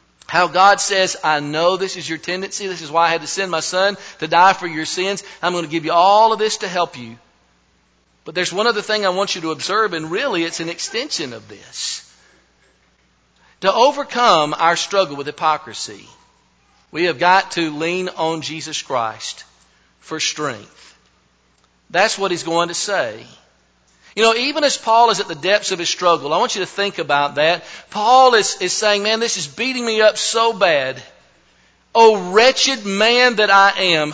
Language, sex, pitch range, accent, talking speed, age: English, male, 125-200 Hz, American, 195 wpm, 50-69